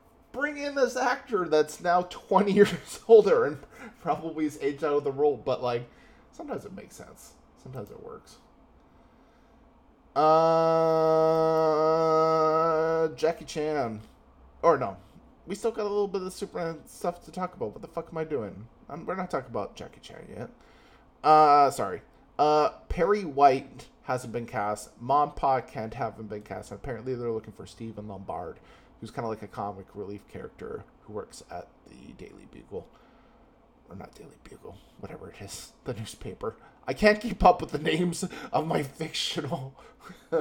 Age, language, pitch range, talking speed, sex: 20-39, English, 115-165 Hz, 165 wpm, male